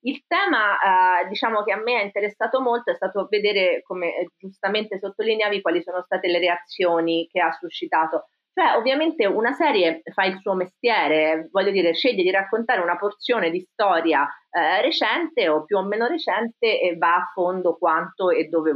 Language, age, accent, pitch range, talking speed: Italian, 30-49, native, 175-270 Hz, 175 wpm